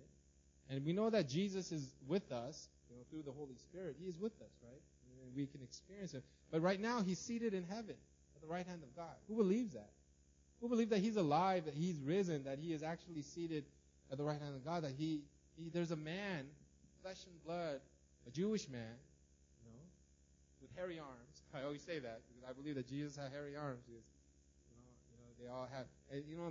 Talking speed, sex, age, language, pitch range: 215 wpm, male, 30-49, English, 125-190 Hz